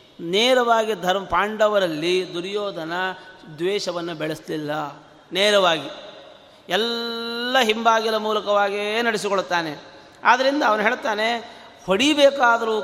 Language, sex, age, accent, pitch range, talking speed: Kannada, male, 30-49, native, 180-235 Hz, 70 wpm